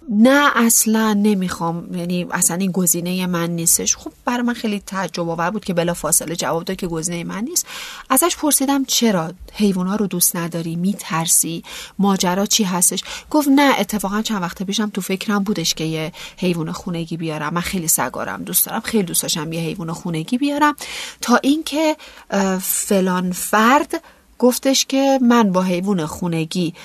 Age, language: 30-49, Persian